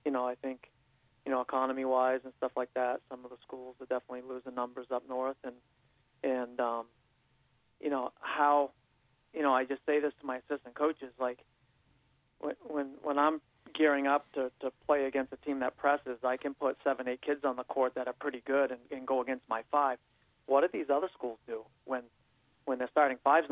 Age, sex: 40-59, male